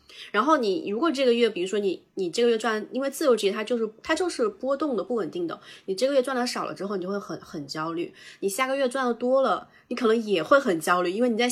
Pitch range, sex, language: 190-260 Hz, female, Chinese